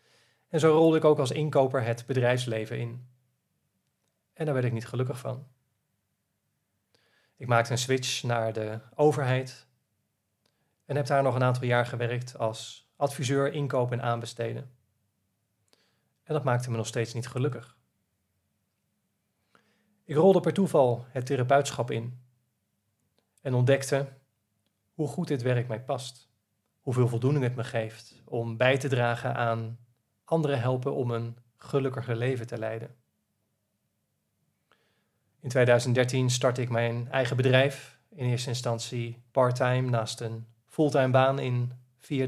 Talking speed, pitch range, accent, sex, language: 135 wpm, 115-135 Hz, Dutch, male, Dutch